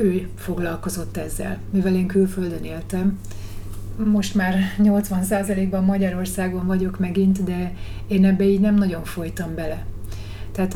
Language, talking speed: Hungarian, 125 wpm